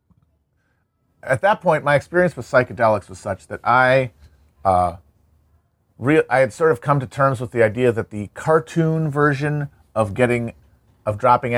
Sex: male